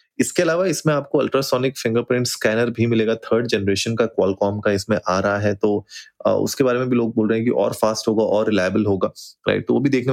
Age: 20-39